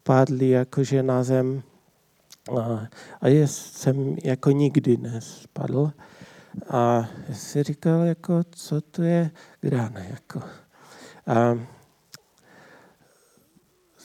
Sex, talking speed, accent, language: male, 85 wpm, native, Czech